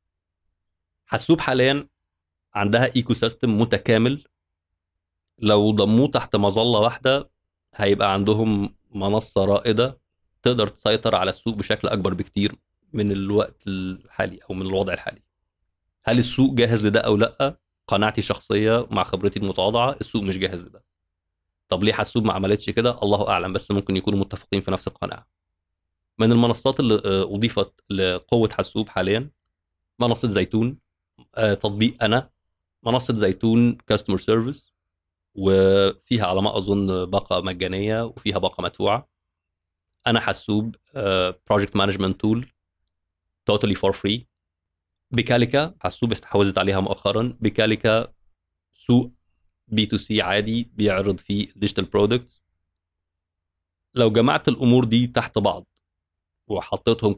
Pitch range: 85-115 Hz